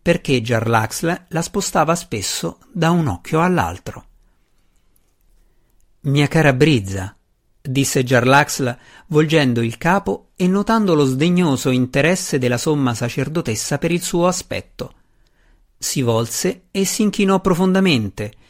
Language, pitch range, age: Italian, 120-170 Hz, 50-69